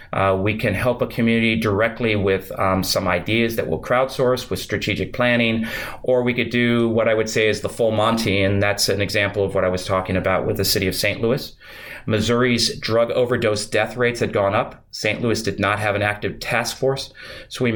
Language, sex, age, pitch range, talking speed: English, male, 30-49, 105-125 Hz, 215 wpm